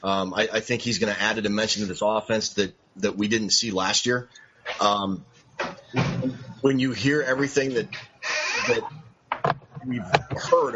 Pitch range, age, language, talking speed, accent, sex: 105-125 Hz, 30-49, English, 160 wpm, American, male